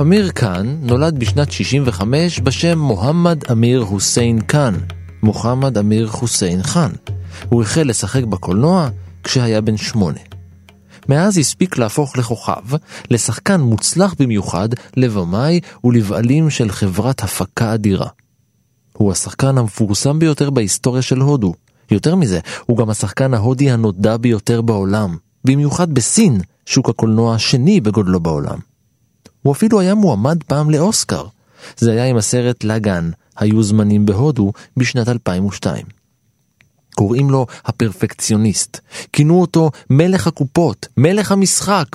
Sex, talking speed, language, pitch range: male, 115 wpm, Hebrew, 105-145 Hz